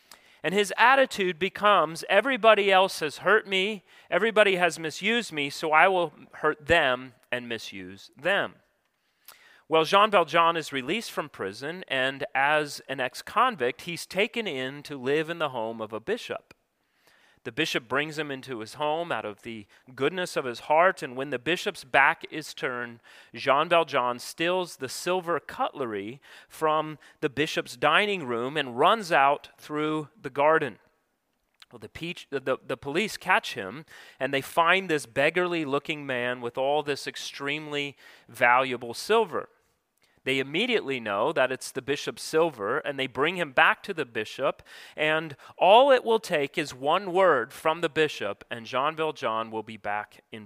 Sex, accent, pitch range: male, American, 130-175 Hz